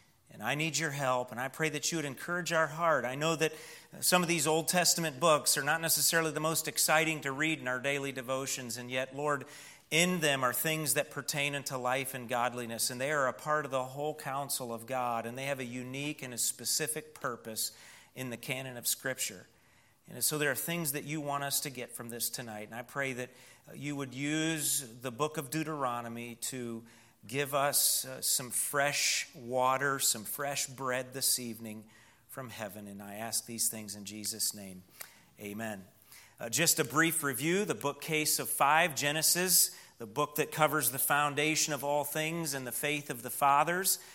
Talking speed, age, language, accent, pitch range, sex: 200 wpm, 40-59, English, American, 125-155 Hz, male